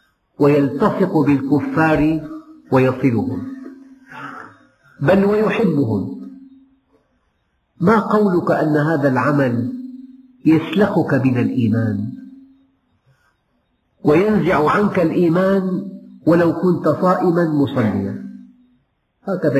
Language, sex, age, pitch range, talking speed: Arabic, male, 50-69, 130-200 Hz, 65 wpm